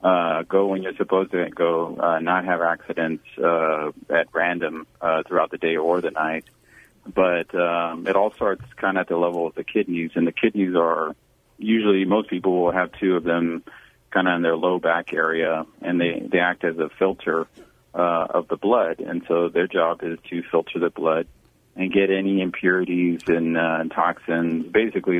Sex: male